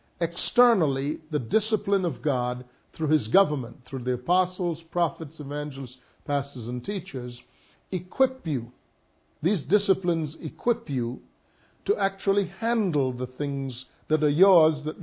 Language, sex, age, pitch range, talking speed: English, male, 50-69, 130-180 Hz, 120 wpm